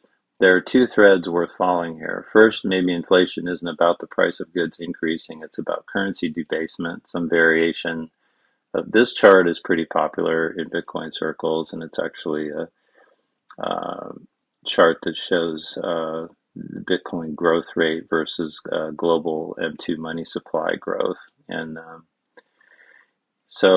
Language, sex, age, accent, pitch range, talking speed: English, male, 40-59, American, 80-90 Hz, 135 wpm